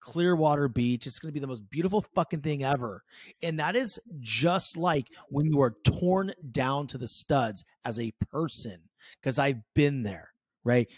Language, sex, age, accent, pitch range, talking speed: English, male, 30-49, American, 120-165 Hz, 185 wpm